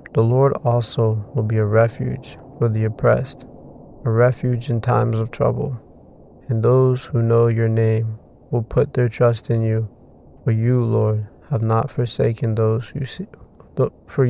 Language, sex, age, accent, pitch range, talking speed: English, male, 20-39, American, 110-125 Hz, 120 wpm